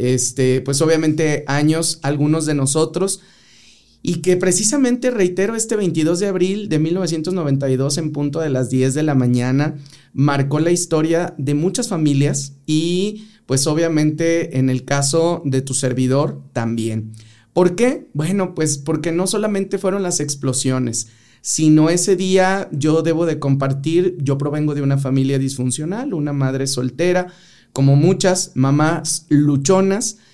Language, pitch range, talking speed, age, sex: Spanish, 135-175 Hz, 140 wpm, 30-49, male